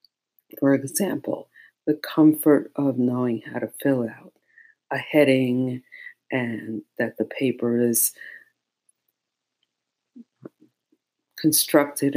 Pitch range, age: 130-185 Hz, 50-69